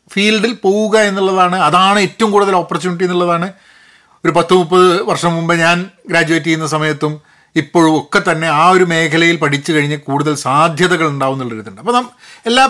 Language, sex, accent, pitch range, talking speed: Malayalam, male, native, 155-215 Hz, 145 wpm